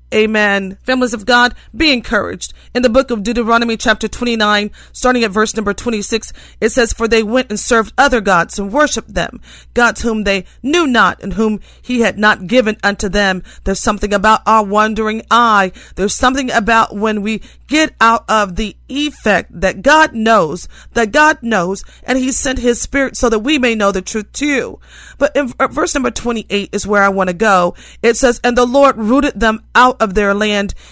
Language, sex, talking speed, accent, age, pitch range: English, female, 195 wpm, American, 40-59, 210-255 Hz